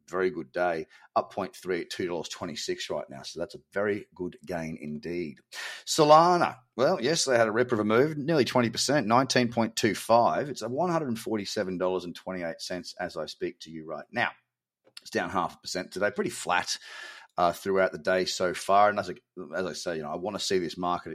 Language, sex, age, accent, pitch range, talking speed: English, male, 30-49, Australian, 95-125 Hz, 240 wpm